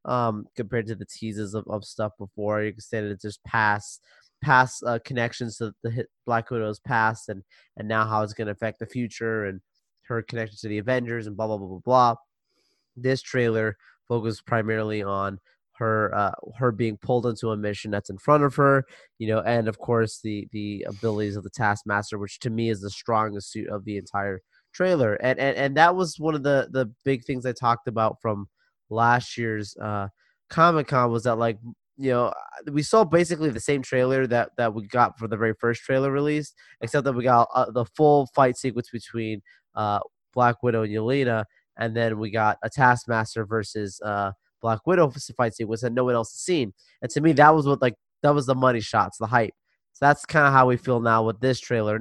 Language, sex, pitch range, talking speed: English, male, 110-125 Hz, 215 wpm